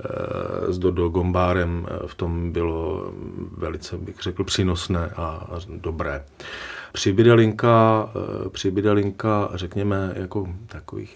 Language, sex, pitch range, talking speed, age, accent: Czech, male, 90-105 Hz, 95 wpm, 40-59, native